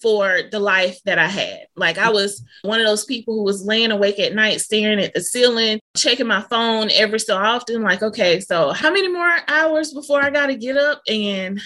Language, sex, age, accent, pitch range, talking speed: English, female, 20-39, American, 200-250 Hz, 220 wpm